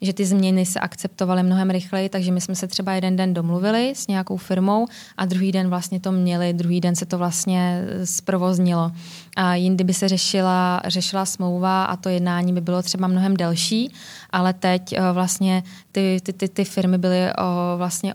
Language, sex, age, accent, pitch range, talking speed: Czech, female, 20-39, native, 180-195 Hz, 175 wpm